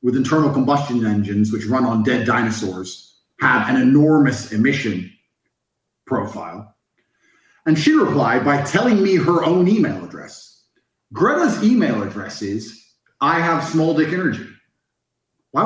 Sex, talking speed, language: male, 130 wpm, English